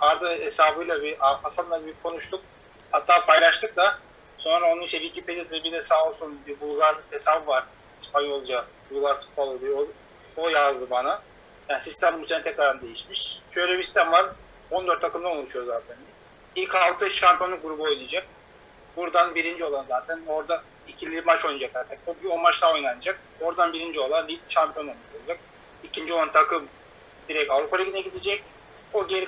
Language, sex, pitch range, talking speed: Turkish, male, 155-195 Hz, 160 wpm